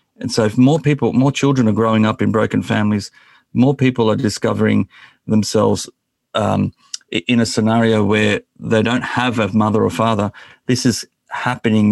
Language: English